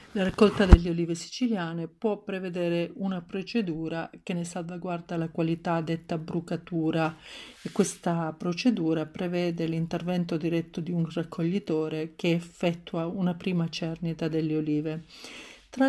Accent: native